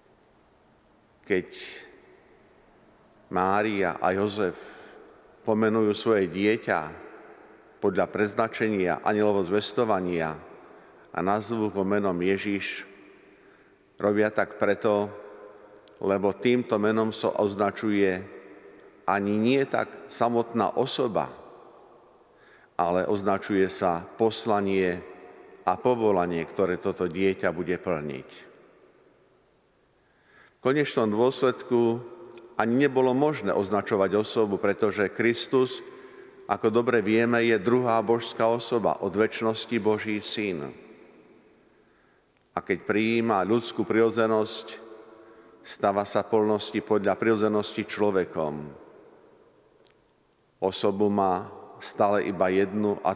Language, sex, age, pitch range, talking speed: Slovak, male, 50-69, 100-115 Hz, 90 wpm